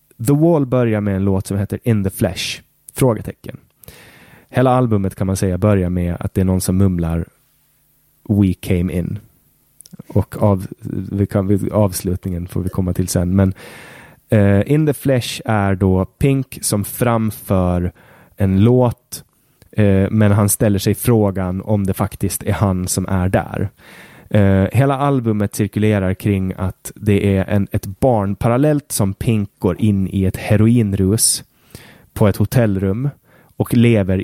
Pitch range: 95-115 Hz